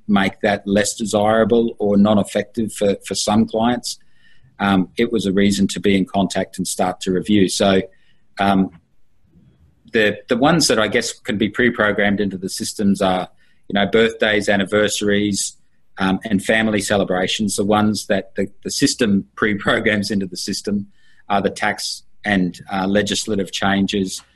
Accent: Australian